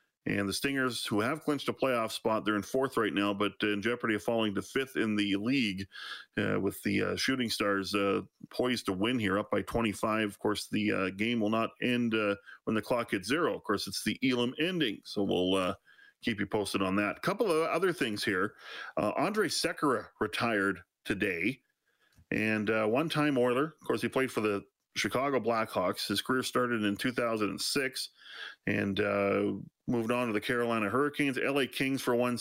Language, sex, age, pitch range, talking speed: English, male, 40-59, 105-125 Hz, 195 wpm